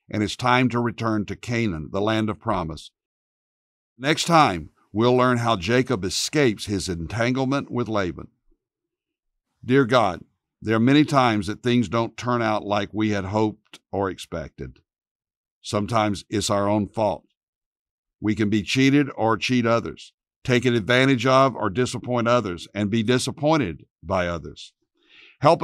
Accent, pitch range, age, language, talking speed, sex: American, 105-135 Hz, 60-79, English, 145 wpm, male